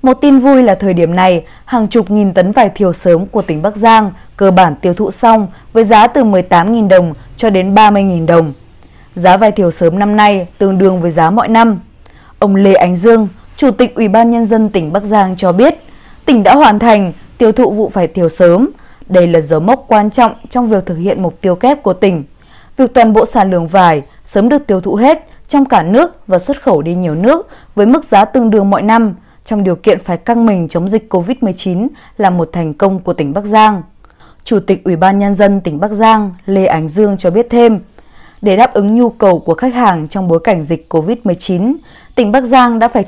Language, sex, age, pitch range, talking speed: Vietnamese, female, 20-39, 180-225 Hz, 225 wpm